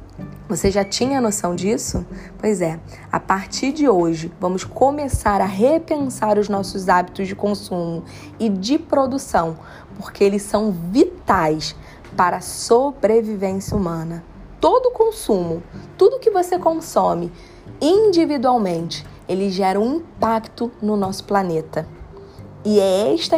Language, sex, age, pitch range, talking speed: Portuguese, female, 20-39, 180-235 Hz, 125 wpm